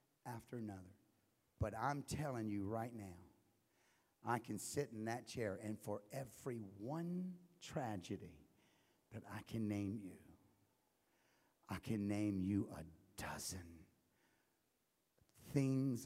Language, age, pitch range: English, 50-69, 105-145 Hz